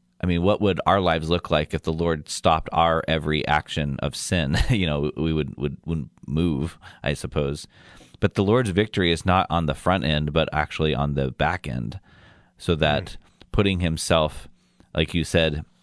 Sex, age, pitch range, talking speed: male, 30-49, 75-95 Hz, 185 wpm